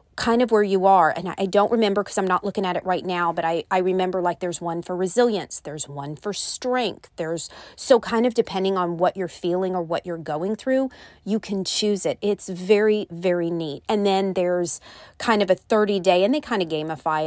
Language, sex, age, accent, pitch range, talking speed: English, female, 30-49, American, 165-210 Hz, 225 wpm